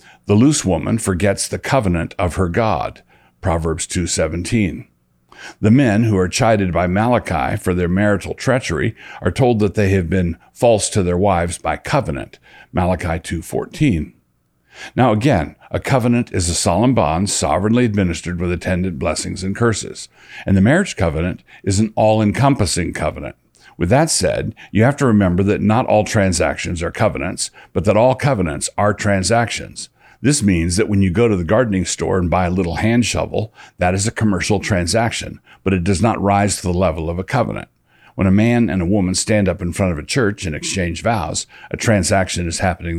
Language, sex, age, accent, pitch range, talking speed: English, male, 60-79, American, 85-110 Hz, 185 wpm